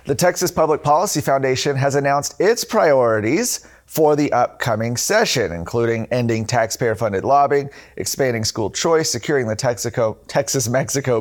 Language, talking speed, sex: English, 125 wpm, male